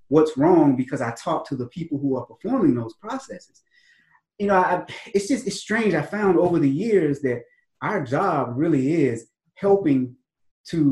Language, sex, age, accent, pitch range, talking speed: English, male, 30-49, American, 120-160 Hz, 170 wpm